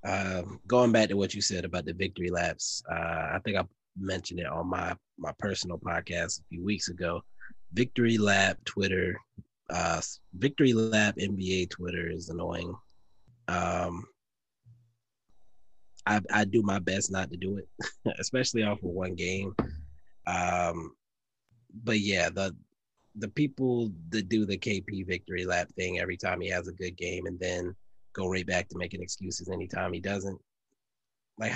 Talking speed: 160 wpm